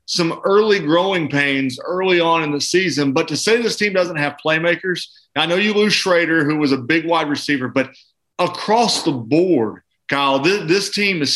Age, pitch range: 30-49, 150-200 Hz